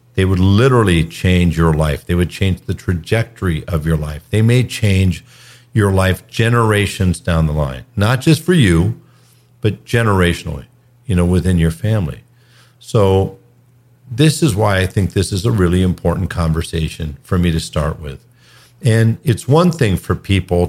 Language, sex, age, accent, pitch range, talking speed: English, male, 50-69, American, 85-120 Hz, 165 wpm